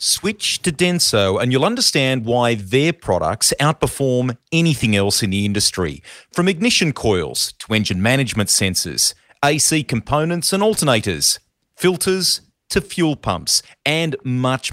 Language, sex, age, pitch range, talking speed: English, male, 40-59, 100-150 Hz, 130 wpm